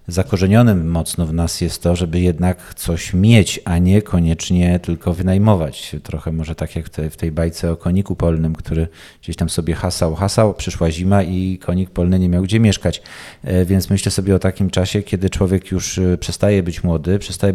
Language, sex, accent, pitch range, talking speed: Polish, male, native, 85-100 Hz, 180 wpm